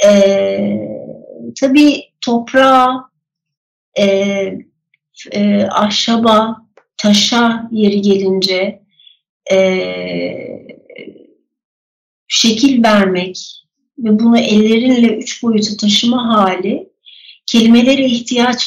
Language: Turkish